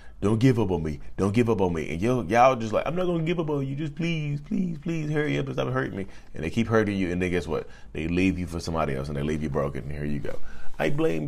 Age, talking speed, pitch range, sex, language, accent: 20-39, 310 wpm, 75-110 Hz, male, English, American